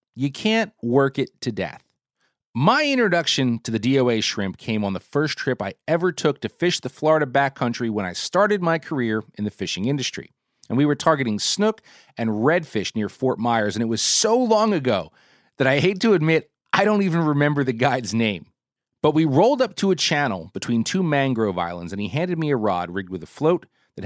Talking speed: 210 wpm